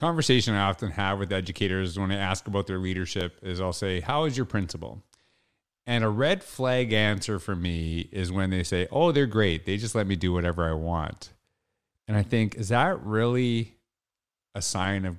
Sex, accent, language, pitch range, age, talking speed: male, American, English, 95-120 Hz, 30-49, 200 wpm